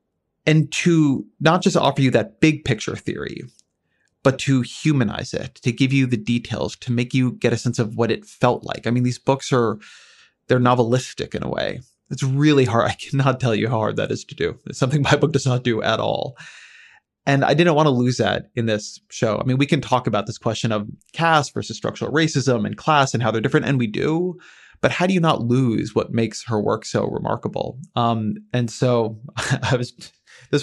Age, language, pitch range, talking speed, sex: 30-49, English, 115-140 Hz, 220 wpm, male